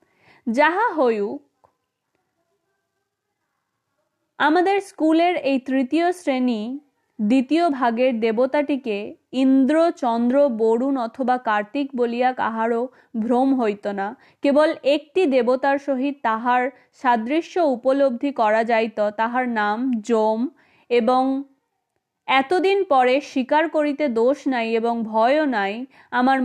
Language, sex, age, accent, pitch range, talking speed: Bengali, female, 30-49, native, 240-295 Hz, 100 wpm